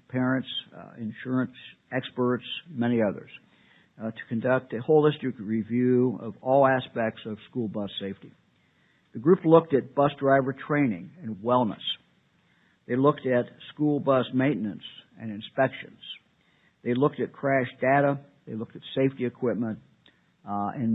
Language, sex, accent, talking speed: English, male, American, 140 wpm